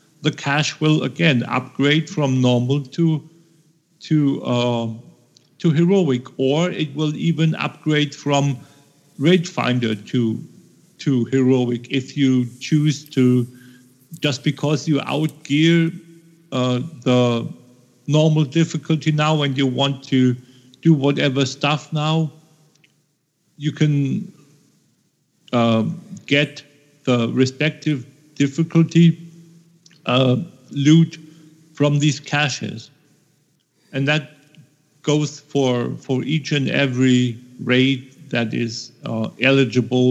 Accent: German